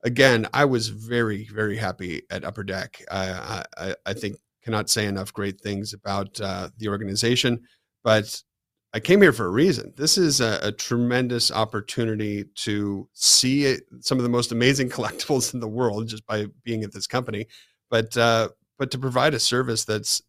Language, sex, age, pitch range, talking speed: English, male, 40-59, 100-120 Hz, 175 wpm